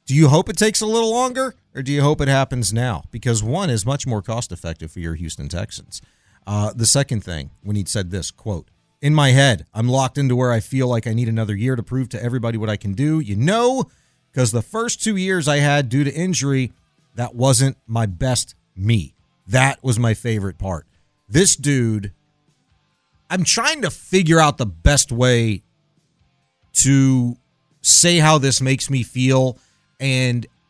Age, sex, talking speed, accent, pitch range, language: 40-59, male, 190 wpm, American, 110-145 Hz, English